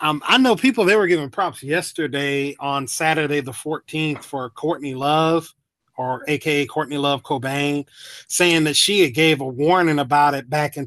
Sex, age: male, 30-49